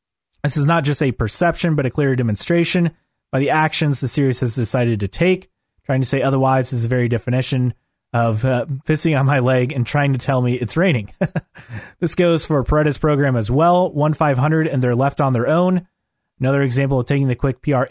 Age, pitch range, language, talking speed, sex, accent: 30-49, 125-150 Hz, English, 205 wpm, male, American